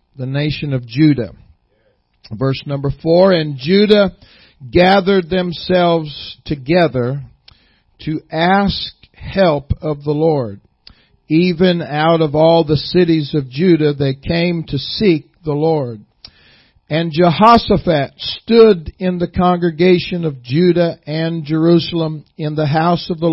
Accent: American